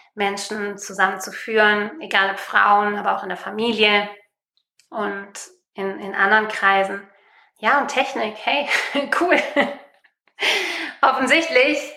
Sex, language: female, German